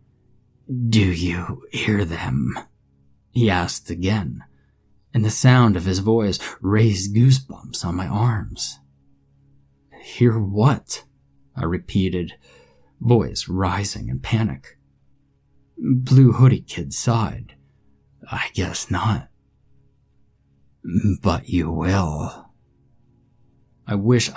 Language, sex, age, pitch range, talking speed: English, male, 30-49, 90-120 Hz, 95 wpm